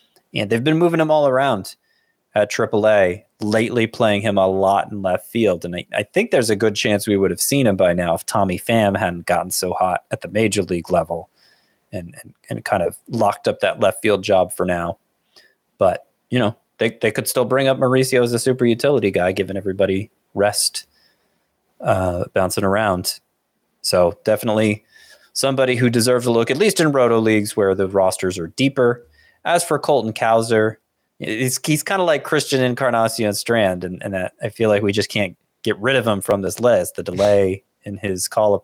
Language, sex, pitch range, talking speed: English, male, 95-130 Hz, 195 wpm